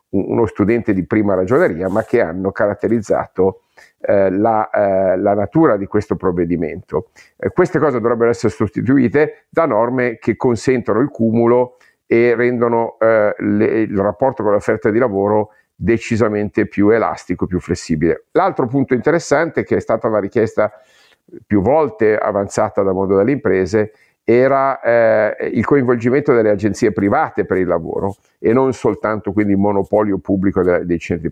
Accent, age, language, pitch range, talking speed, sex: native, 50-69, Italian, 100-125 Hz, 145 wpm, male